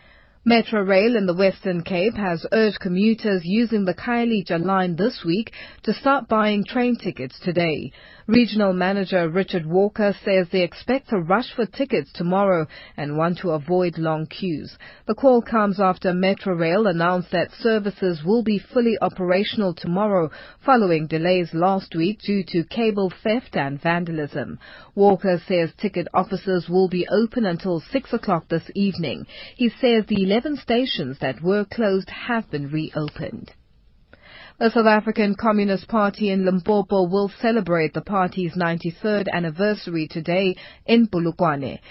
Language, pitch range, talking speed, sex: English, 175-215 Hz, 145 wpm, female